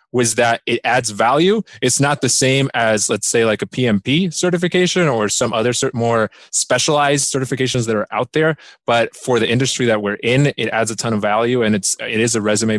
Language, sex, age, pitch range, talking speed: English, male, 20-39, 110-145 Hz, 215 wpm